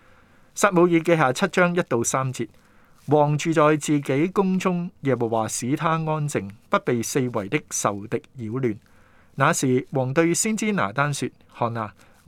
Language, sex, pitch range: Chinese, male, 115-165 Hz